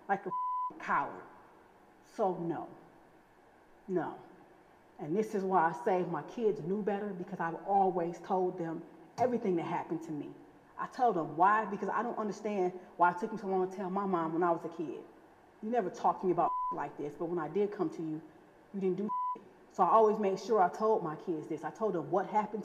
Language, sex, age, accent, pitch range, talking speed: English, female, 30-49, American, 180-230 Hz, 215 wpm